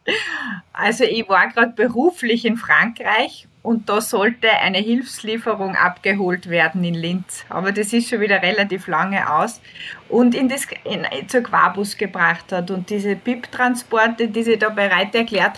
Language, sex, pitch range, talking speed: German, female, 190-235 Hz, 160 wpm